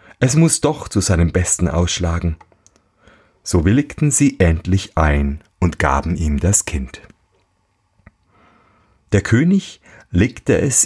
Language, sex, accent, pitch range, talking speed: German, male, German, 90-115 Hz, 115 wpm